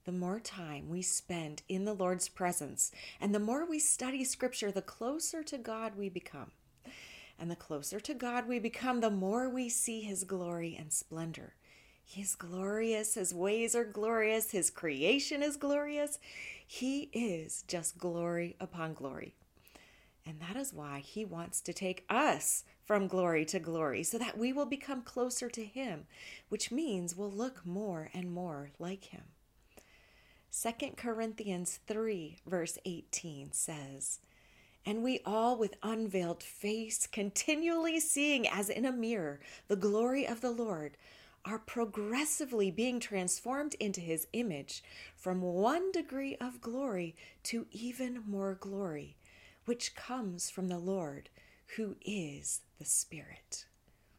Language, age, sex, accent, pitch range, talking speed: English, 30-49, female, American, 175-240 Hz, 145 wpm